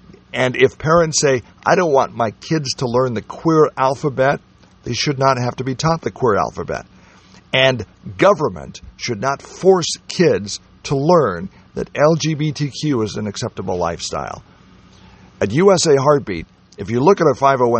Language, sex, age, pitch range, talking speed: English, male, 50-69, 100-145 Hz, 155 wpm